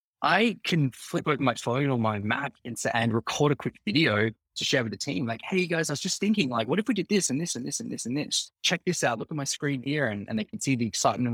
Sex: male